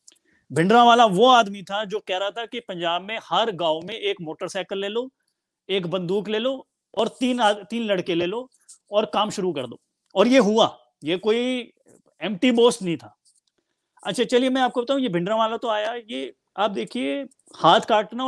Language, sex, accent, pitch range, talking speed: Hindi, male, native, 180-235 Hz, 195 wpm